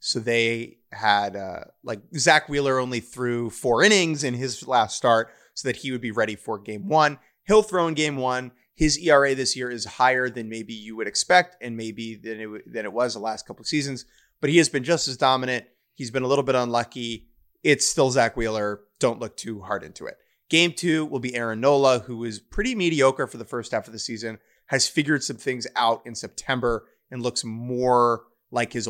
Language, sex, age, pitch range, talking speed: English, male, 30-49, 115-145 Hz, 215 wpm